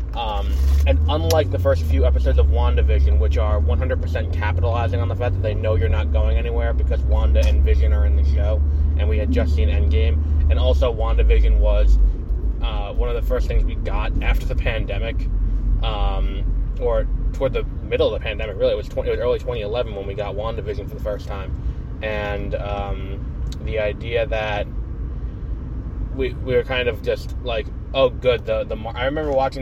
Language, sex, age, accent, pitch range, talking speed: English, male, 20-39, American, 70-110 Hz, 190 wpm